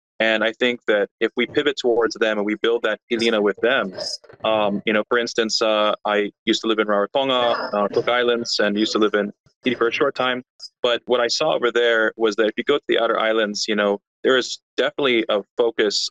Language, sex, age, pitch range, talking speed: English, male, 20-39, 105-115 Hz, 235 wpm